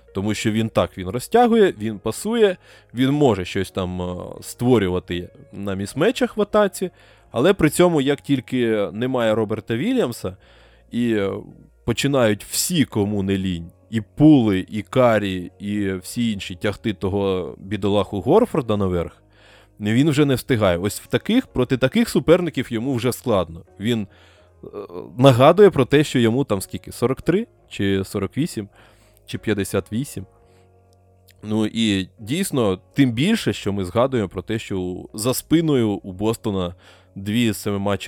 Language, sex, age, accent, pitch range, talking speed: Ukrainian, male, 20-39, native, 95-130 Hz, 140 wpm